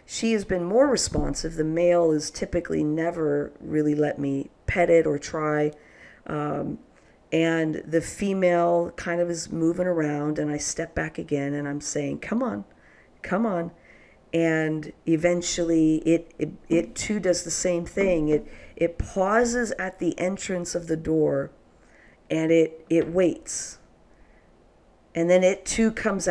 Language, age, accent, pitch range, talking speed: English, 50-69, American, 145-170 Hz, 150 wpm